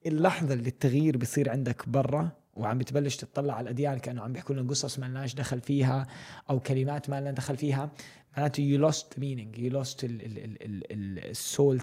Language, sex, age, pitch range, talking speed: Arabic, male, 20-39, 125-145 Hz, 165 wpm